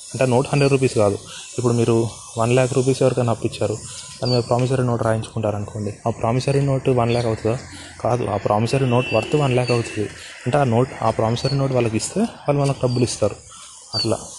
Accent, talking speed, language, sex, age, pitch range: native, 190 wpm, Telugu, male, 20-39, 110-130 Hz